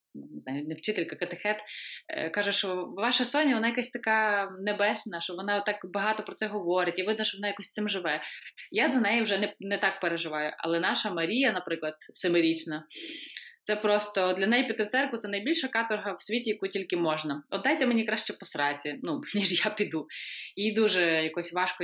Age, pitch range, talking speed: 20-39, 175-225 Hz, 180 wpm